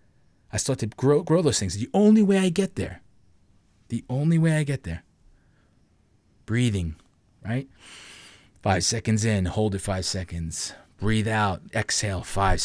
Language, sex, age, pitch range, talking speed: English, male, 30-49, 100-130 Hz, 150 wpm